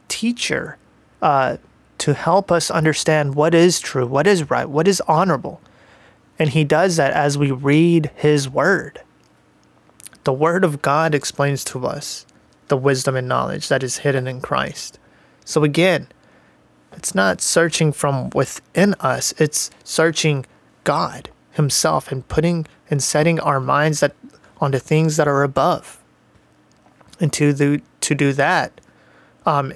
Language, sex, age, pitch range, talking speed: English, male, 30-49, 135-160 Hz, 145 wpm